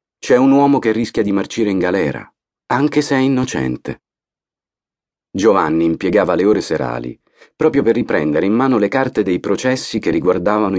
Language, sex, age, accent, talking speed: Italian, male, 40-59, native, 160 wpm